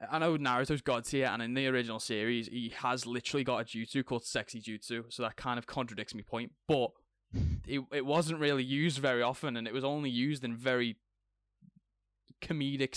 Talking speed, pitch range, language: 195 wpm, 110-135 Hz, English